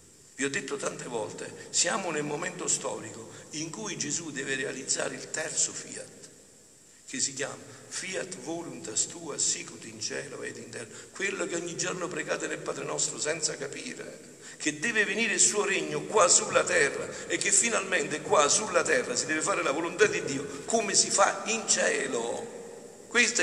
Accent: native